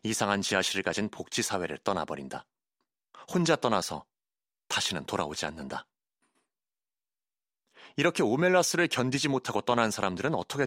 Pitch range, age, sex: 100-135 Hz, 30-49, male